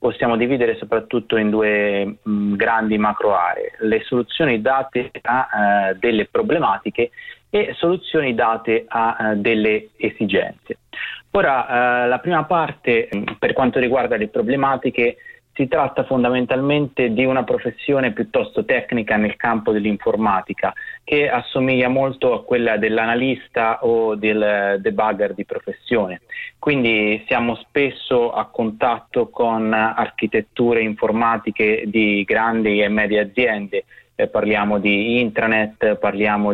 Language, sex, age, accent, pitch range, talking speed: Italian, male, 30-49, native, 105-130 Hz, 115 wpm